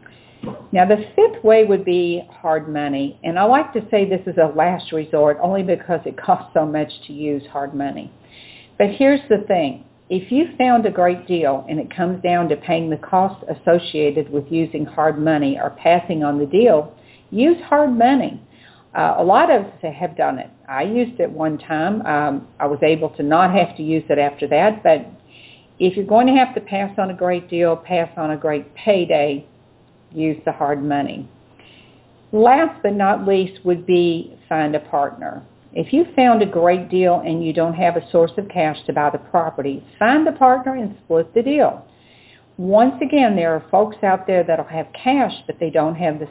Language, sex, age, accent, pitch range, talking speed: English, female, 50-69, American, 155-210 Hz, 200 wpm